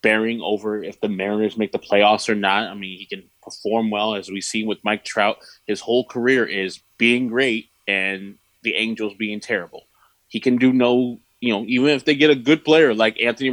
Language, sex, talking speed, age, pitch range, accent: English, male, 215 wpm, 20-39, 100-130 Hz, American